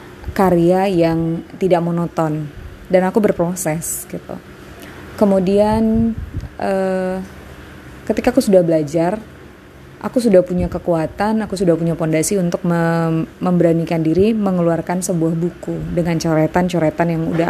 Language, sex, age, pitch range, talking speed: Indonesian, female, 20-39, 165-200 Hz, 115 wpm